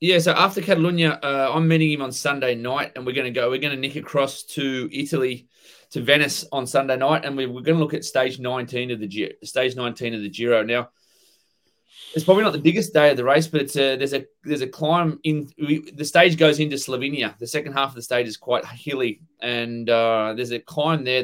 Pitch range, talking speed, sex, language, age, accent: 120-150 Hz, 235 wpm, male, English, 20-39, Australian